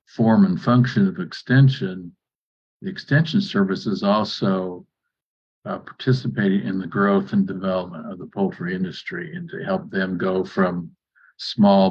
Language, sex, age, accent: Chinese, male, 50-69, American